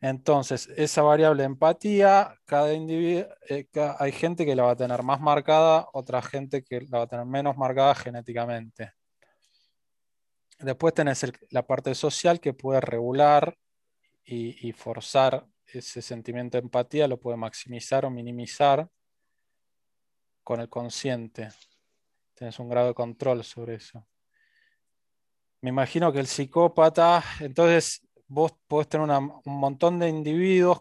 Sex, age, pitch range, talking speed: male, 20-39, 125-150 Hz, 140 wpm